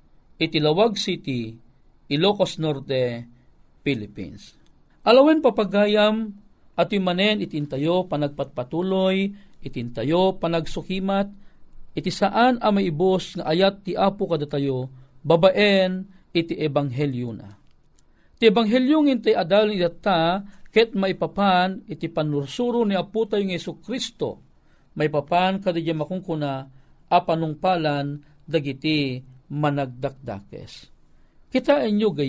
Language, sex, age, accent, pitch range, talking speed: Filipino, male, 50-69, native, 145-190 Hz, 100 wpm